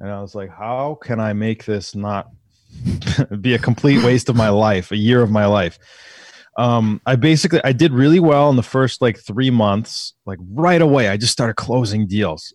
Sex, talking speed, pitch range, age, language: male, 205 wpm, 105-130 Hz, 20-39, English